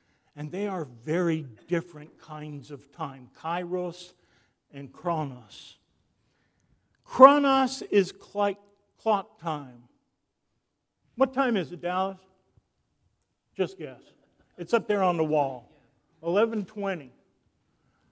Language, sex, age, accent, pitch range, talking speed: English, male, 50-69, American, 150-230 Hz, 95 wpm